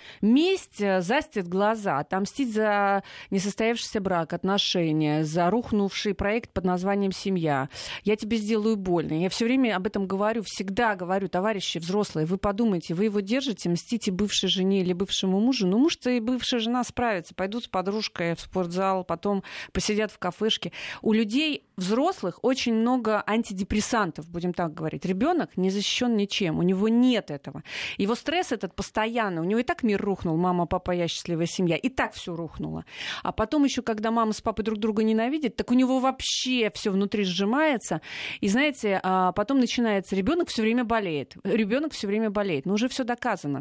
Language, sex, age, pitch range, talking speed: Russian, female, 30-49, 185-235 Hz, 170 wpm